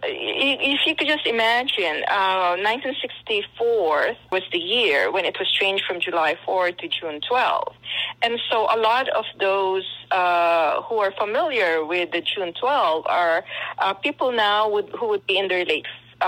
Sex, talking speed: female, 160 wpm